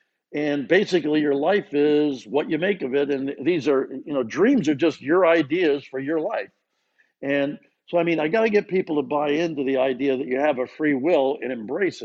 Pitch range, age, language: 135-165 Hz, 50-69, English